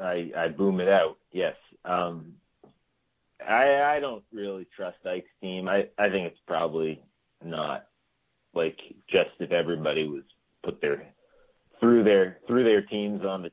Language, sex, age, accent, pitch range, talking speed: English, male, 30-49, American, 80-120 Hz, 150 wpm